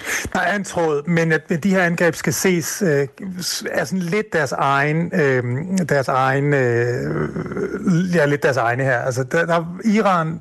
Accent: native